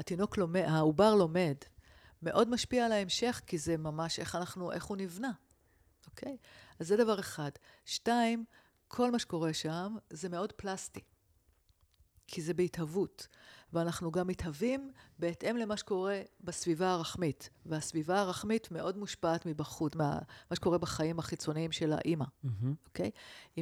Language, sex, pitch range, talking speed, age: Hebrew, female, 155-190 Hz, 140 wpm, 50-69